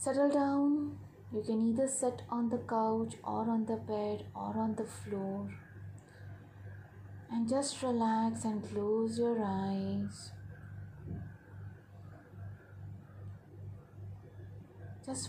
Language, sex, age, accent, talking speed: English, female, 30-49, Indian, 100 wpm